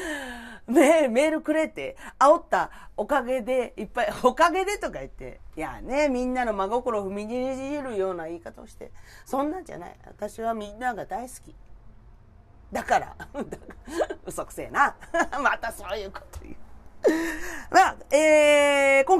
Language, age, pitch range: Japanese, 40-59, 210-295 Hz